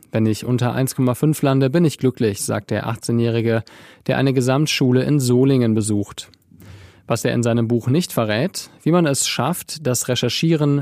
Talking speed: 165 wpm